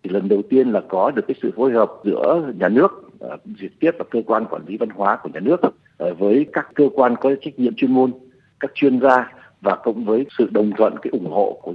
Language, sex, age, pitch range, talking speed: Vietnamese, male, 60-79, 115-160 Hz, 245 wpm